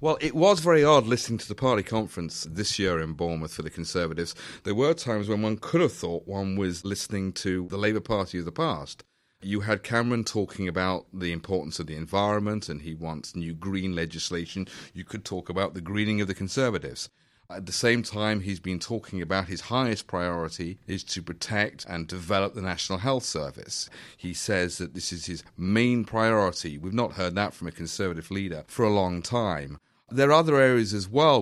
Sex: male